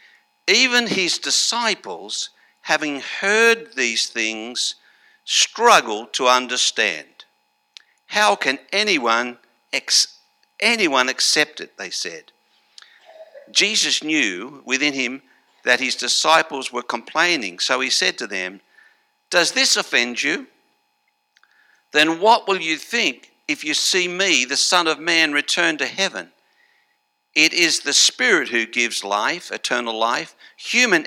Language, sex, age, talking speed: English, male, 60-79, 120 wpm